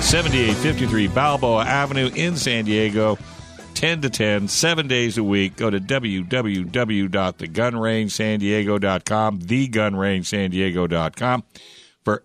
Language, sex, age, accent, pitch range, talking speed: English, male, 60-79, American, 100-120 Hz, 90 wpm